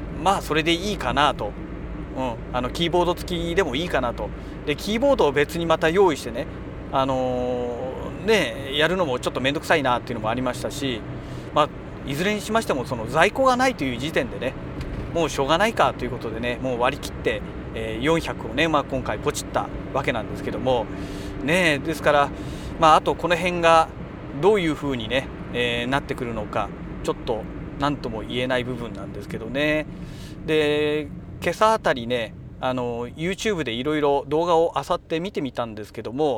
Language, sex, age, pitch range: Japanese, male, 40-59, 125-175 Hz